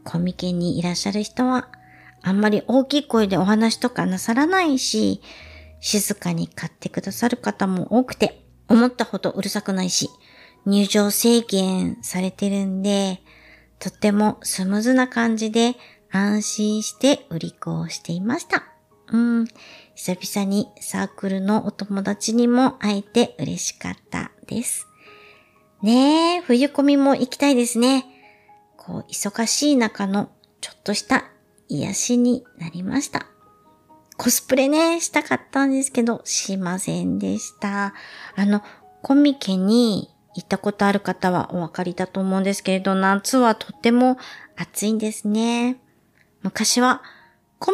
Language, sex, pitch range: Japanese, male, 185-245 Hz